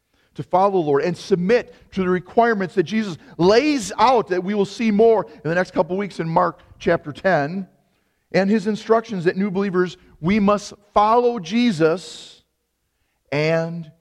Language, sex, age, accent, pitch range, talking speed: English, male, 40-59, American, 120-175 Hz, 165 wpm